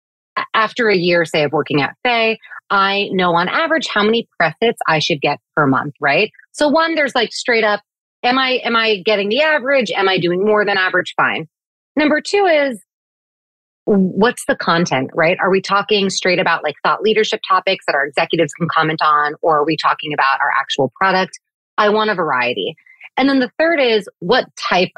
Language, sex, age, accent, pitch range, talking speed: English, female, 30-49, American, 160-215 Hz, 195 wpm